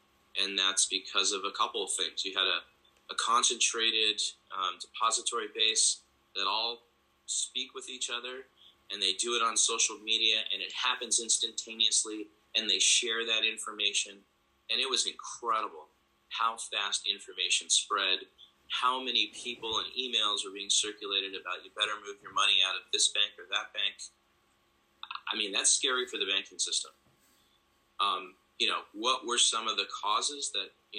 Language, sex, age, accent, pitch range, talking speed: English, male, 30-49, American, 100-125 Hz, 165 wpm